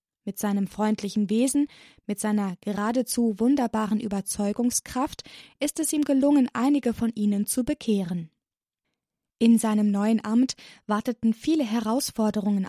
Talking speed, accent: 120 wpm, German